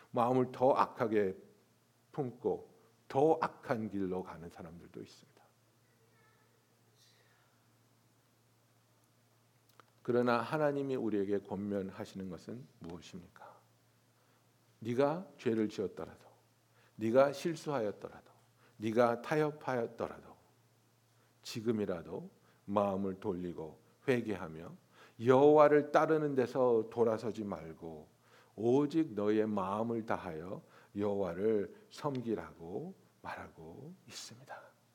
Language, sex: Korean, male